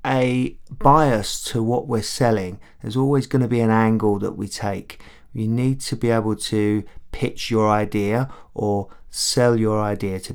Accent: British